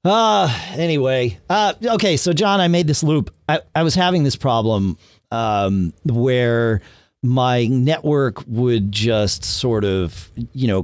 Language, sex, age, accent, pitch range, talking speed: English, male, 40-59, American, 105-175 Hz, 145 wpm